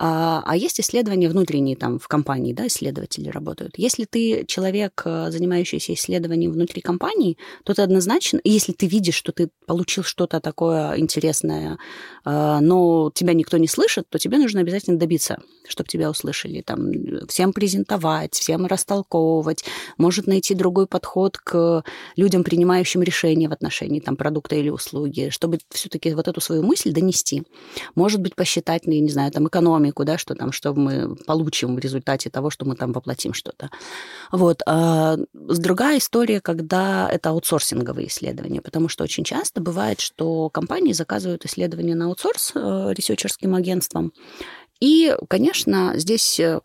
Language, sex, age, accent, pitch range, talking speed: Russian, female, 20-39, native, 150-185 Hz, 150 wpm